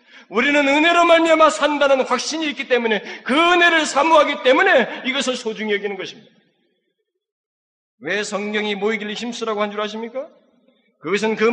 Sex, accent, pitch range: male, native, 150-225 Hz